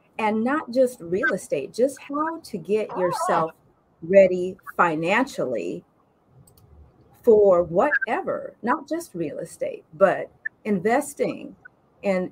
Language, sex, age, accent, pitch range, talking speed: English, female, 40-59, American, 190-265 Hz, 100 wpm